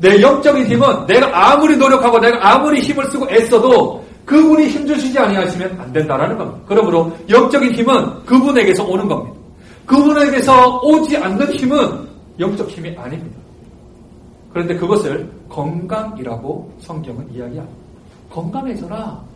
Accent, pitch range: native, 165-260 Hz